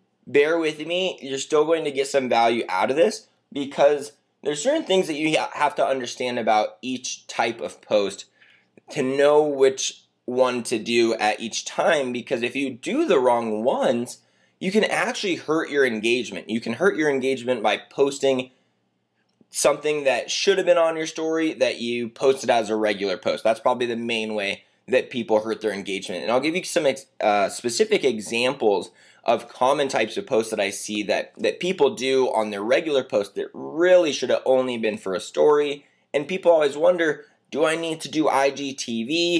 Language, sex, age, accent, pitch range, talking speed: English, male, 20-39, American, 115-155 Hz, 190 wpm